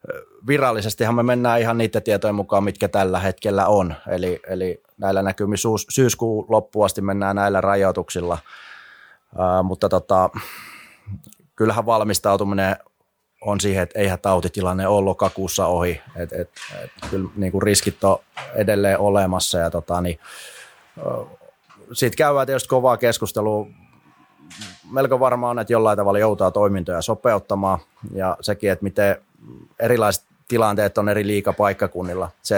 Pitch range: 95-110 Hz